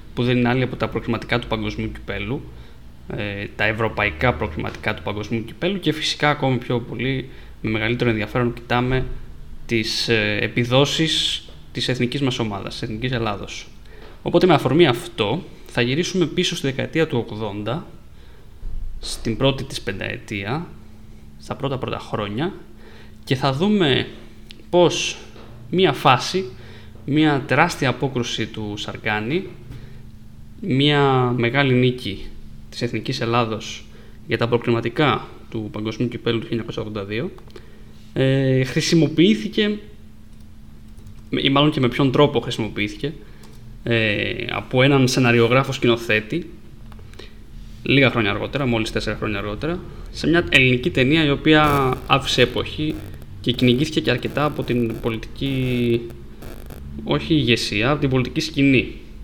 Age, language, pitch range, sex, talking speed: 20-39, Greek, 110-135 Hz, male, 120 wpm